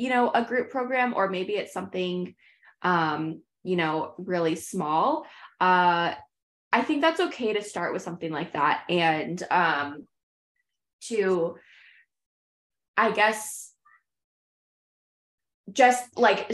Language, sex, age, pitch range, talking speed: English, female, 20-39, 170-215 Hz, 115 wpm